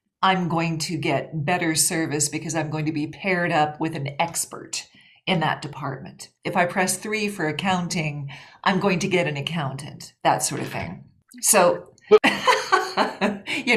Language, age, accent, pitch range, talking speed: English, 40-59, American, 150-185 Hz, 160 wpm